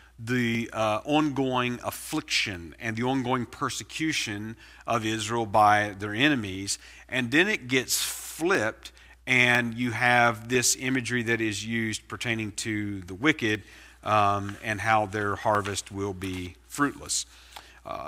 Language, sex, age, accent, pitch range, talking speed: English, male, 40-59, American, 100-125 Hz, 130 wpm